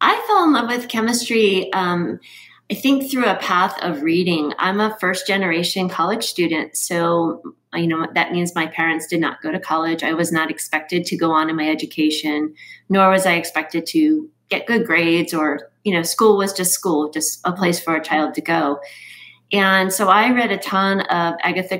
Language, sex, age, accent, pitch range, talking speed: English, female, 30-49, American, 165-190 Hz, 200 wpm